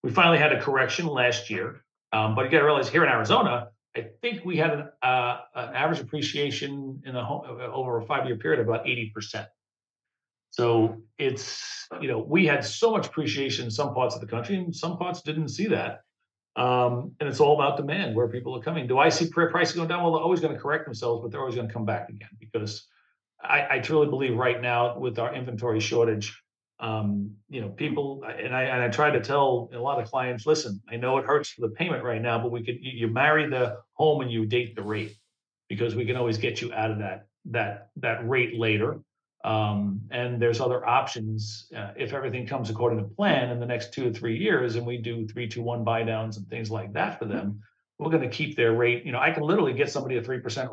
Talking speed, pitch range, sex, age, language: 230 wpm, 115-145 Hz, male, 50-69, English